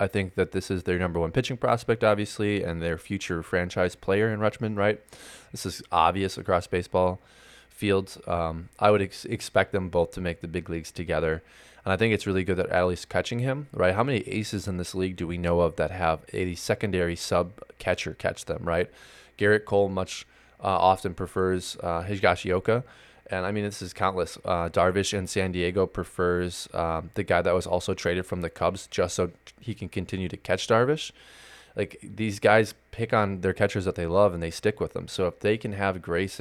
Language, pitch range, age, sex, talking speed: English, 85-100 Hz, 20-39, male, 210 wpm